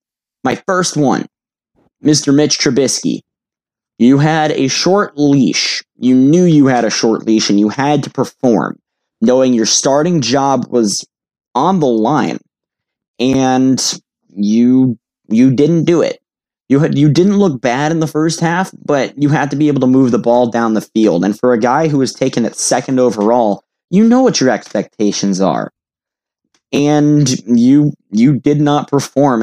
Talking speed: 165 wpm